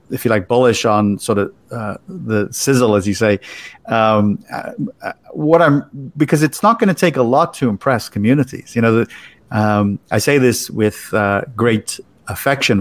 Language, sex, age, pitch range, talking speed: English, male, 50-69, 105-125 Hz, 185 wpm